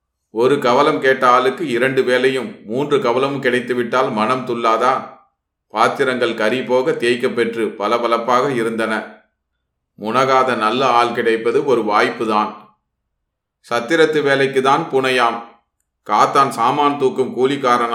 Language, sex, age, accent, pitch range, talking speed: Tamil, male, 30-49, native, 110-130 Hz, 100 wpm